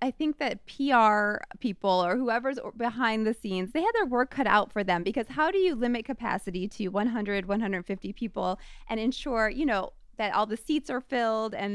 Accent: American